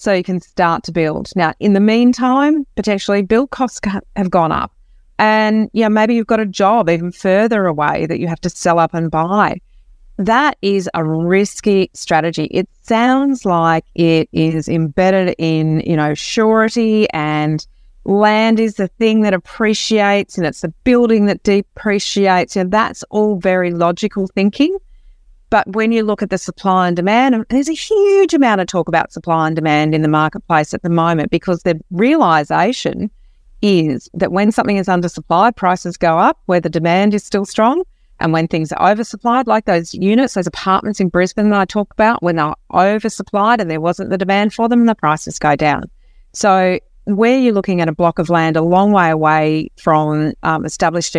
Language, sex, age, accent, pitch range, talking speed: English, female, 40-59, Australian, 165-215 Hz, 185 wpm